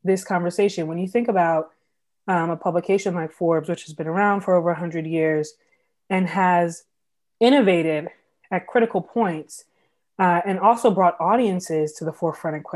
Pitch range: 165-195 Hz